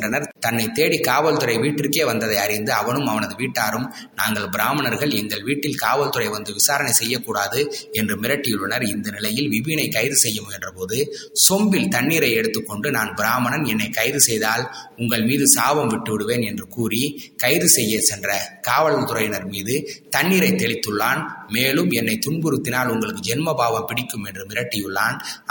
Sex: male